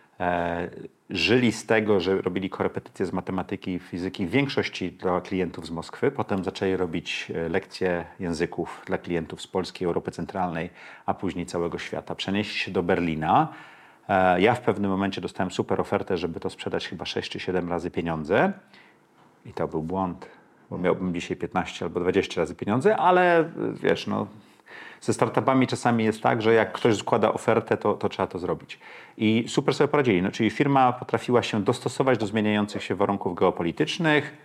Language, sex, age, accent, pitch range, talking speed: Polish, male, 40-59, native, 90-120 Hz, 170 wpm